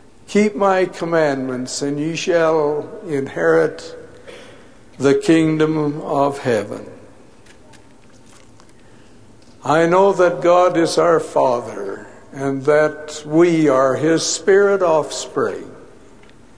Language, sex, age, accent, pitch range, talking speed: English, male, 60-79, American, 145-185 Hz, 90 wpm